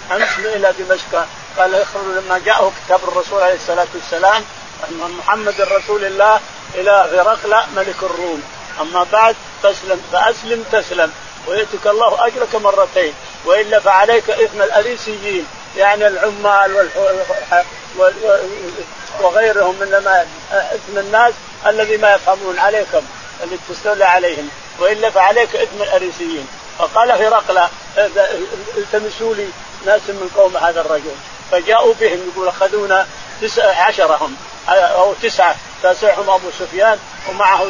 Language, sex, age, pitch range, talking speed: Arabic, male, 50-69, 185-220 Hz, 110 wpm